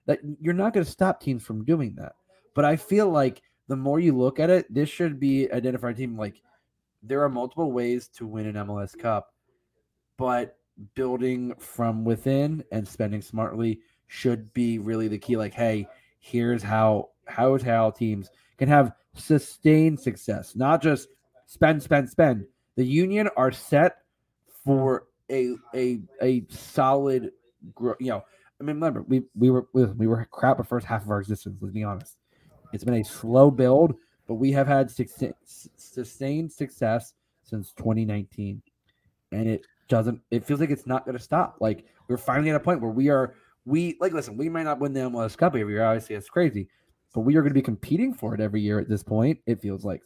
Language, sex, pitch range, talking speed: English, male, 110-145 Hz, 190 wpm